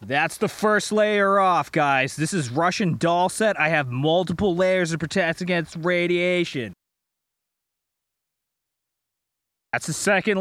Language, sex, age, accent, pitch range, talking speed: English, male, 20-39, American, 145-190 Hz, 125 wpm